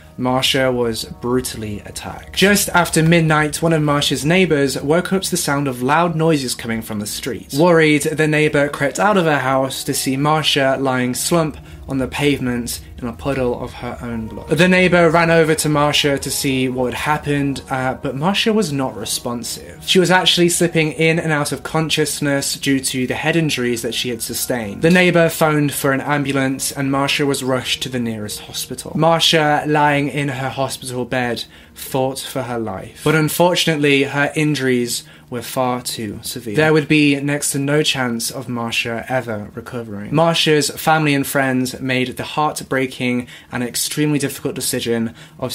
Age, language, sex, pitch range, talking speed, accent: 20-39, English, male, 120-150 Hz, 180 wpm, British